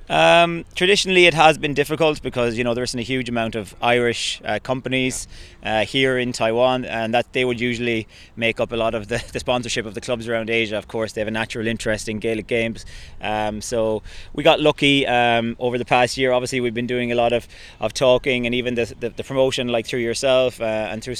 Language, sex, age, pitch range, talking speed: English, male, 20-39, 105-120 Hz, 225 wpm